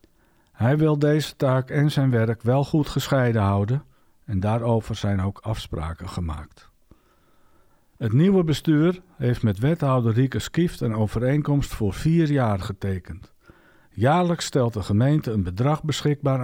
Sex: male